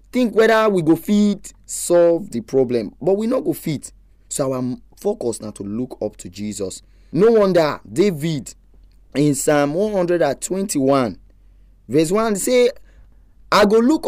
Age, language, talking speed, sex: 20-39, English, 150 wpm, male